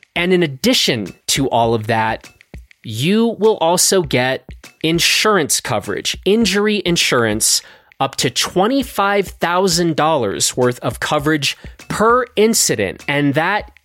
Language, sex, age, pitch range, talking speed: English, male, 30-49, 130-195 Hz, 110 wpm